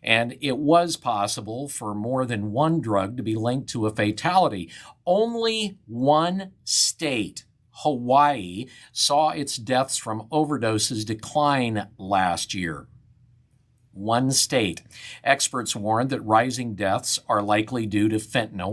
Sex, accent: male, American